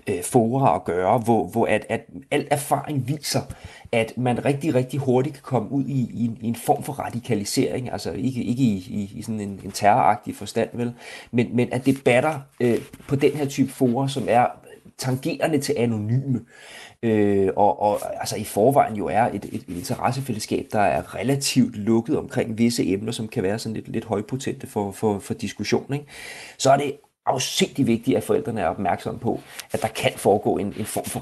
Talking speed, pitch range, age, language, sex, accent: 200 wpm, 105-125 Hz, 30-49, Danish, male, native